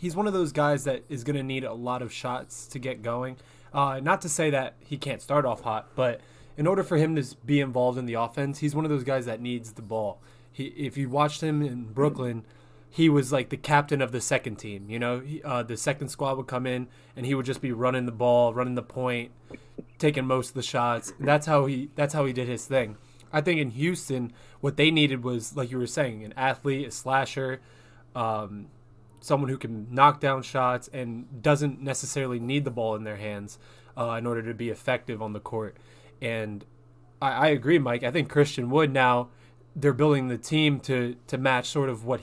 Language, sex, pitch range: English, male, 120-145 Hz